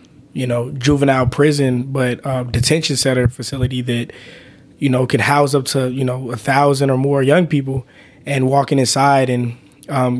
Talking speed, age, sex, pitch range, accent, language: 170 wpm, 20-39, male, 125-140 Hz, American, English